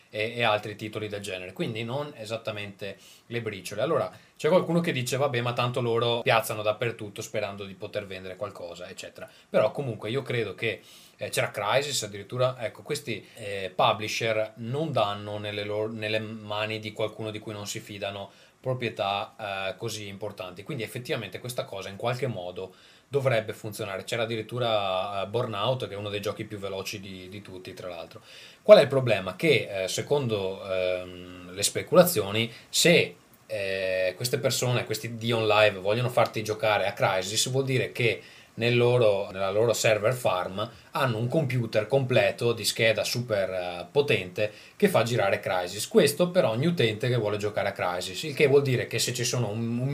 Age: 20-39